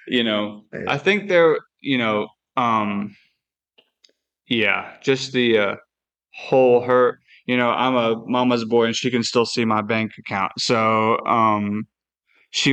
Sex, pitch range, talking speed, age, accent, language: male, 110-125 Hz, 145 wpm, 20-39, American, English